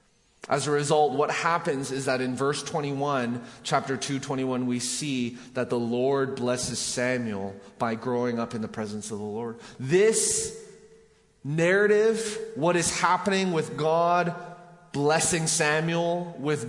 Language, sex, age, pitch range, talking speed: English, male, 20-39, 125-170 Hz, 140 wpm